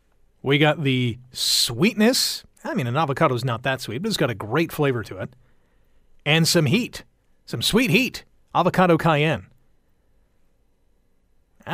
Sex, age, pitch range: male, 40-59, 130-185 Hz